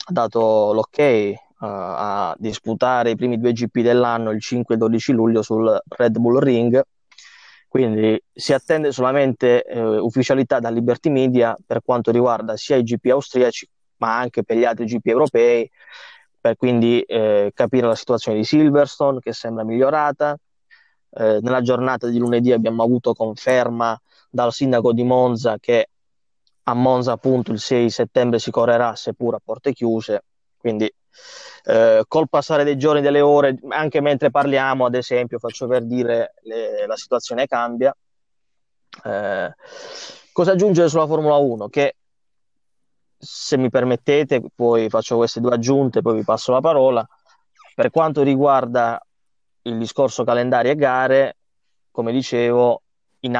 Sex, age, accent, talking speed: male, 20-39, native, 145 wpm